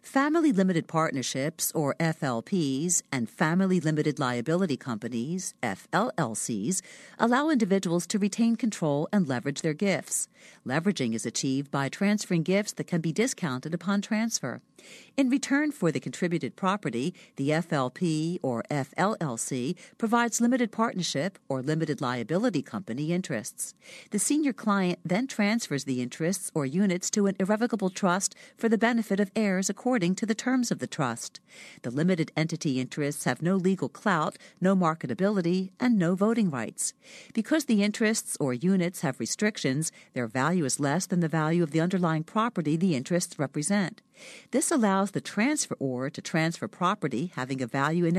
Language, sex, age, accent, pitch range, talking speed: English, female, 60-79, American, 150-210 Hz, 150 wpm